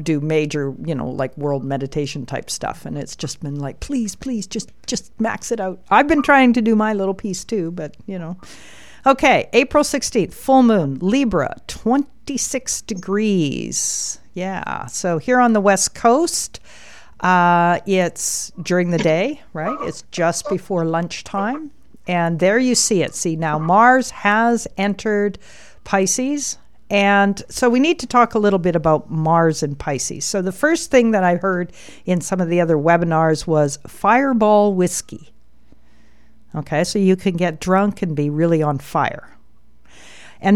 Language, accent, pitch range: English, American, 170-220 Hz